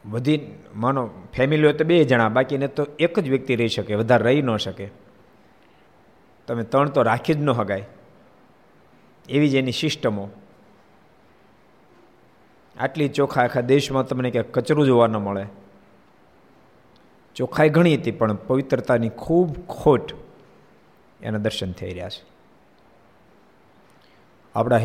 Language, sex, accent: Gujarati, male, native